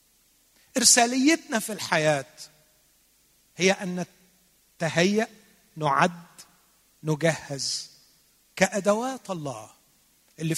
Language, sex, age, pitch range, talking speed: Arabic, male, 40-59, 145-195 Hz, 60 wpm